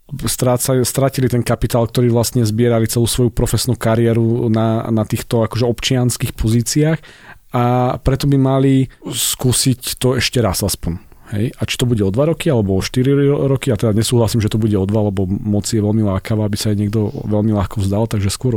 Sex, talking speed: male, 190 wpm